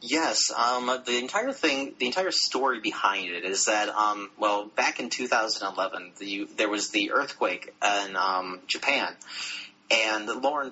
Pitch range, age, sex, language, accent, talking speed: 100-115 Hz, 30-49, male, English, American, 150 wpm